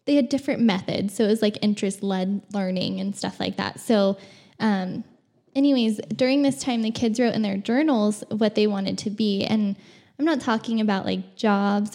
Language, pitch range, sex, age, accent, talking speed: English, 200-230 Hz, female, 10-29, American, 190 wpm